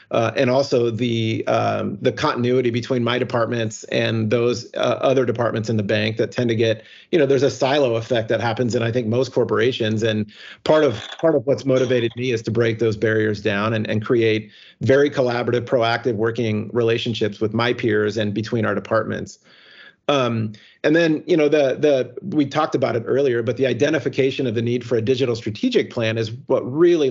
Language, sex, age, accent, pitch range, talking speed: English, male, 40-59, American, 115-130 Hz, 200 wpm